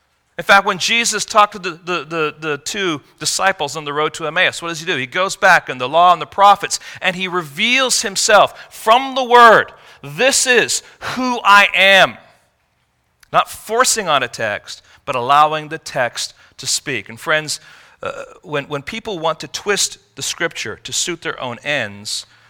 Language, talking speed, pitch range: English, 185 wpm, 120-185 Hz